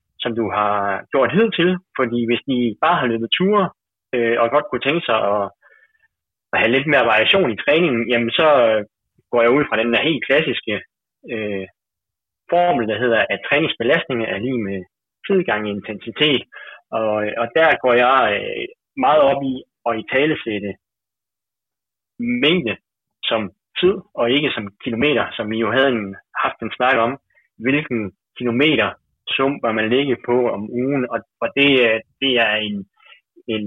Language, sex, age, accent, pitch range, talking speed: Danish, male, 30-49, native, 110-140 Hz, 165 wpm